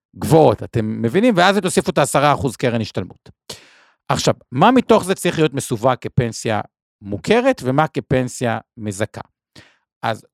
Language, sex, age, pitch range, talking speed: Hebrew, male, 50-69, 115-175 Hz, 135 wpm